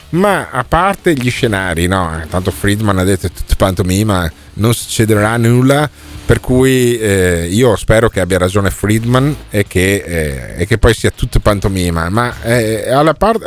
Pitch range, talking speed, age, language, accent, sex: 90-115 Hz, 165 wpm, 40-59, Italian, native, male